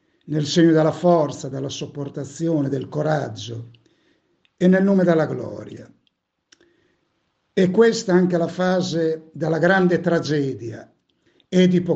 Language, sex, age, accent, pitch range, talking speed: Italian, male, 60-79, native, 150-185 Hz, 110 wpm